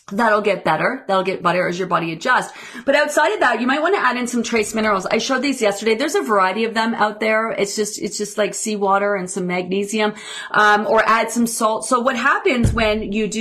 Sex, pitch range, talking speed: female, 190-235 Hz, 240 wpm